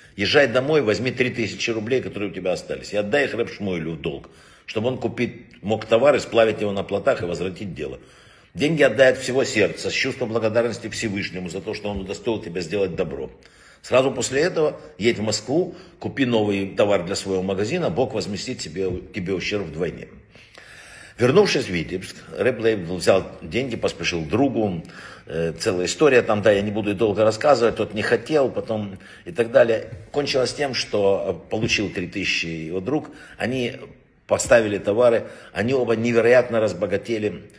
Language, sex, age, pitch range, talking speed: Russian, male, 60-79, 95-125 Hz, 165 wpm